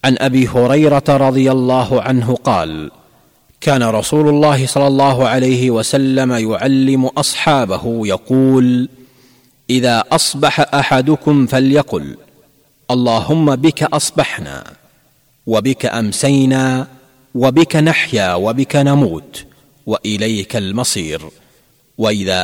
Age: 40-59